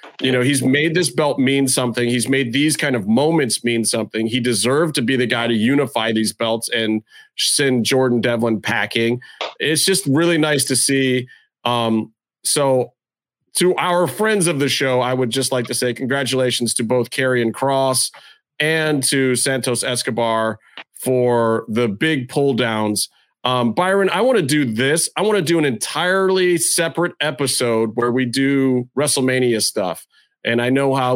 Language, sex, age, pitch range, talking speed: English, male, 30-49, 115-140 Hz, 170 wpm